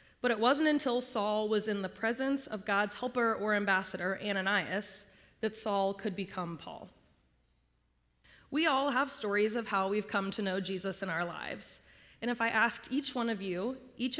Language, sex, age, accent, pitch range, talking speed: English, female, 20-39, American, 195-240 Hz, 180 wpm